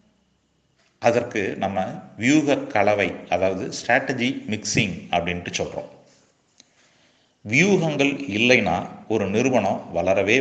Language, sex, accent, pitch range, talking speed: Tamil, male, native, 100-150 Hz, 80 wpm